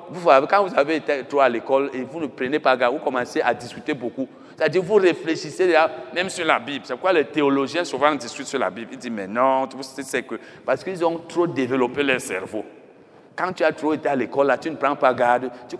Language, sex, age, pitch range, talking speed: French, male, 60-79, 135-185 Hz, 245 wpm